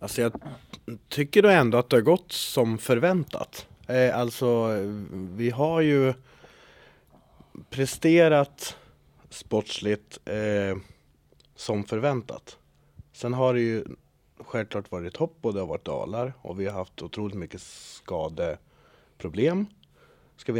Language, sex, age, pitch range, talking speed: Swedish, male, 30-49, 100-130 Hz, 120 wpm